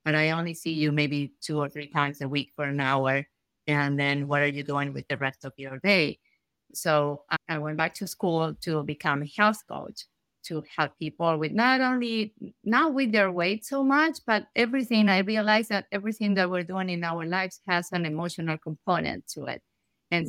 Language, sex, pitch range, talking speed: English, female, 150-180 Hz, 205 wpm